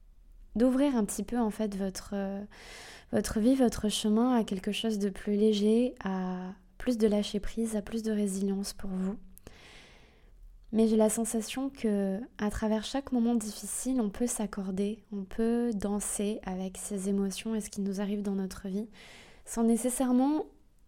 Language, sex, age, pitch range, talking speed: French, female, 20-39, 200-225 Hz, 160 wpm